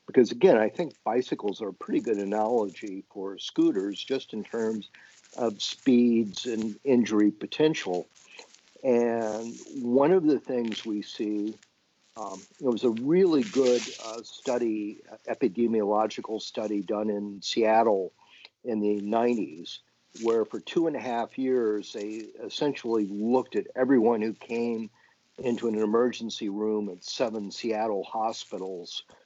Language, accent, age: English, American, 50-69